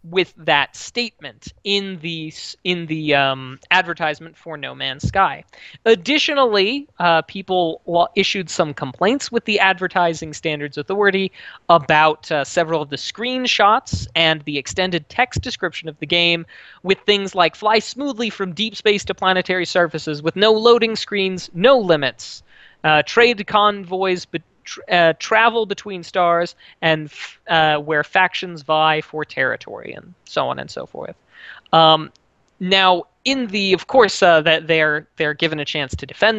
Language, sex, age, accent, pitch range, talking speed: English, male, 20-39, American, 160-220 Hz, 150 wpm